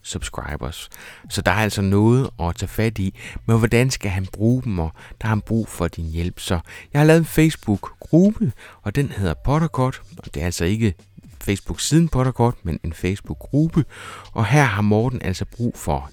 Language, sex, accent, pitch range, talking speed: Danish, male, native, 90-125 Hz, 180 wpm